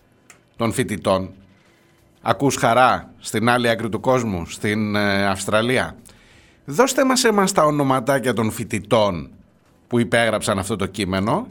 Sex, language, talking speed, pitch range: male, Greek, 125 wpm, 110-160 Hz